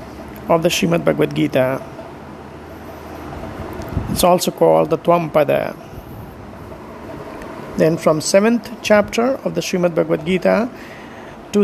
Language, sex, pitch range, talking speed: Hindi, male, 150-200 Hz, 115 wpm